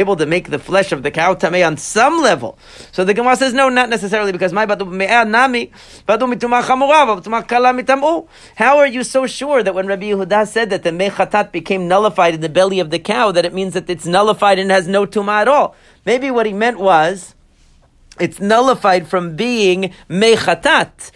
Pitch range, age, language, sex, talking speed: 180-225 Hz, 40-59, English, male, 180 wpm